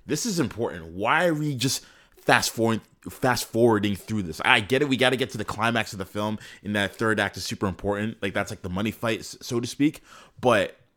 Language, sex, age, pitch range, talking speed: English, male, 20-39, 100-130 Hz, 235 wpm